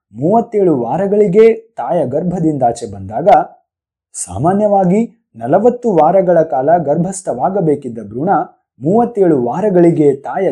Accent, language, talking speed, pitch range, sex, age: native, Kannada, 80 wpm, 140-210 Hz, male, 20-39